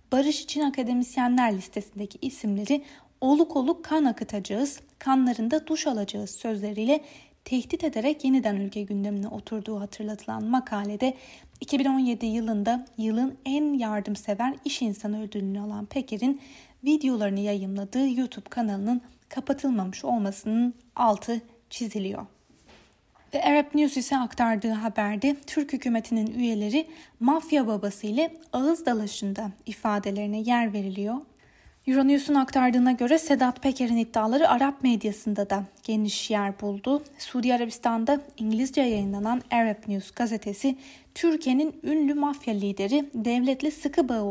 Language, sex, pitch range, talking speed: Turkish, female, 210-275 Hz, 110 wpm